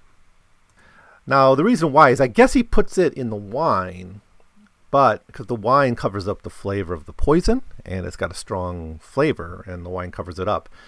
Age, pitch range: 40-59, 90-110 Hz